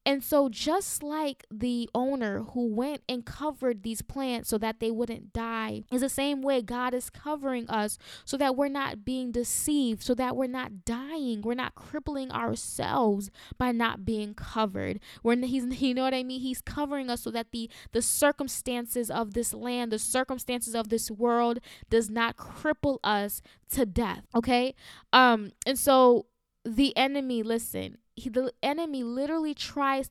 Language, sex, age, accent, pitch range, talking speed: English, female, 10-29, American, 230-270 Hz, 170 wpm